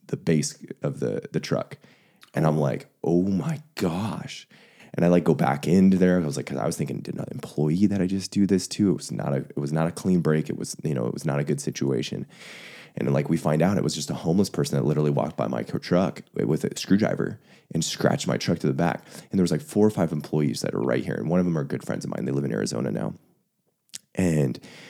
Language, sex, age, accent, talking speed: English, male, 20-39, American, 265 wpm